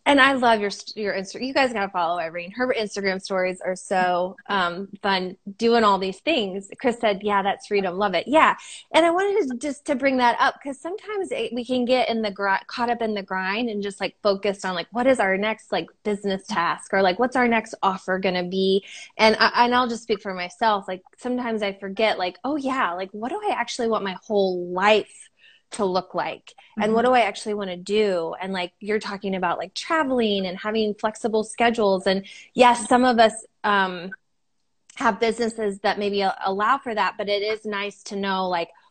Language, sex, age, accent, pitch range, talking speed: English, female, 20-39, American, 195-245 Hz, 215 wpm